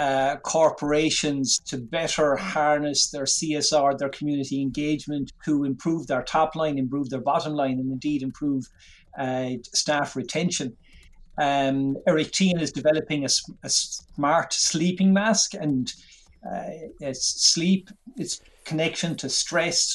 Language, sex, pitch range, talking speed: English, male, 135-155 Hz, 130 wpm